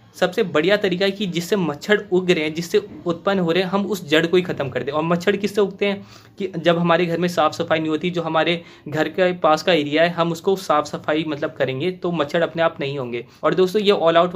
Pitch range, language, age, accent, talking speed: 150-185 Hz, Hindi, 20-39, native, 260 wpm